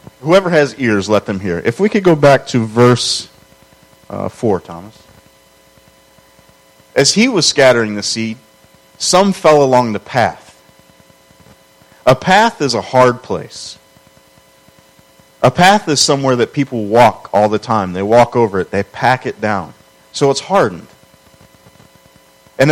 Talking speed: 145 wpm